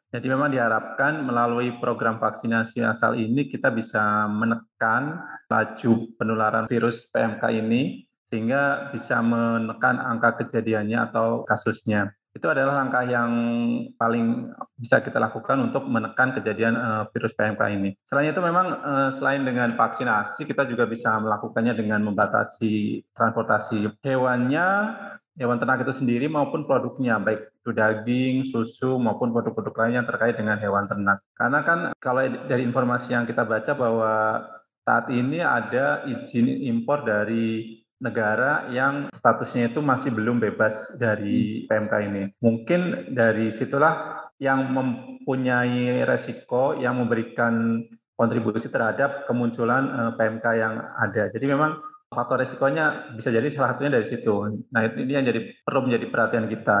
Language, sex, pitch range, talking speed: Indonesian, male, 110-130 Hz, 135 wpm